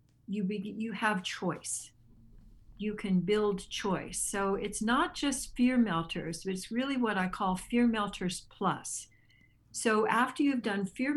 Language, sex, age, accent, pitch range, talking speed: English, female, 60-79, American, 175-220 Hz, 145 wpm